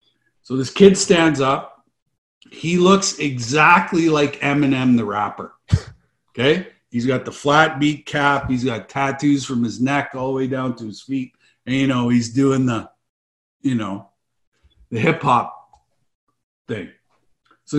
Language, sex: English, male